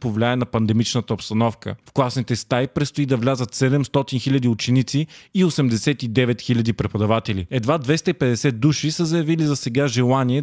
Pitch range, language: 115-140 Hz, Bulgarian